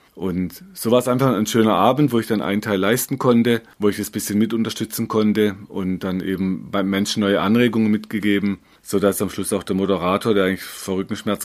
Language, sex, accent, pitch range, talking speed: German, male, German, 100-110 Hz, 210 wpm